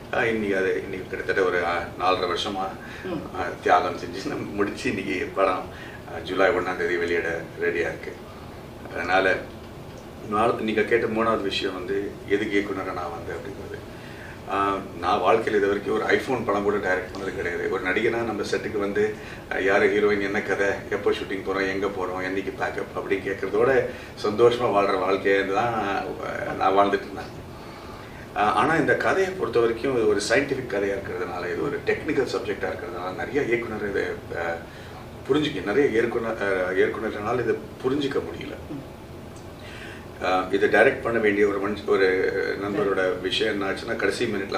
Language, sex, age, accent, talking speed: Tamil, male, 30-49, native, 135 wpm